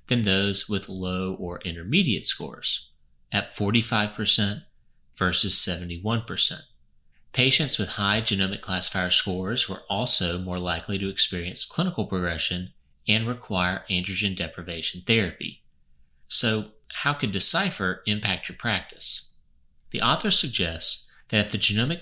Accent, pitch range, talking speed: American, 90-110 Hz, 120 wpm